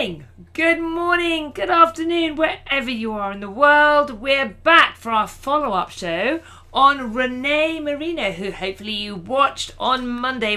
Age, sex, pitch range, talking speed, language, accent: 40-59, female, 205-285 Hz, 140 wpm, English, British